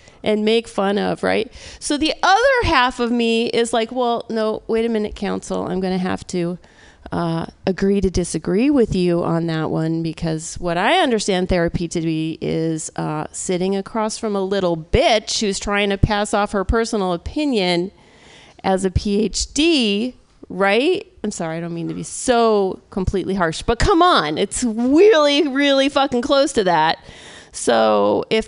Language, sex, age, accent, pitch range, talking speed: English, female, 40-59, American, 185-250 Hz, 170 wpm